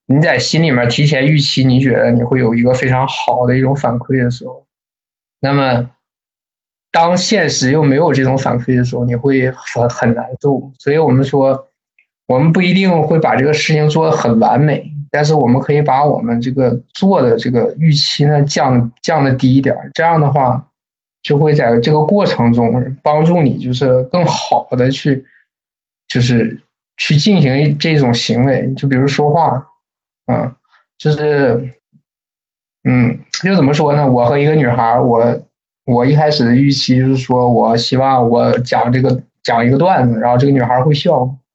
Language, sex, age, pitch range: Chinese, male, 20-39, 125-150 Hz